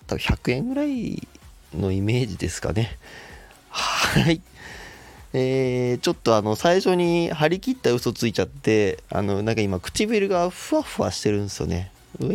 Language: Japanese